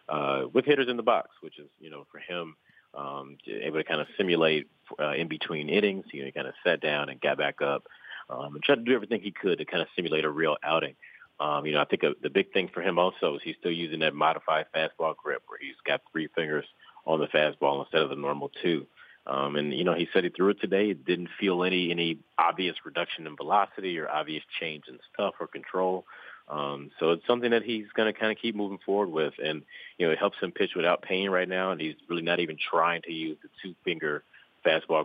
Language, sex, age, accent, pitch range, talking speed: English, male, 30-49, American, 75-105 Hz, 245 wpm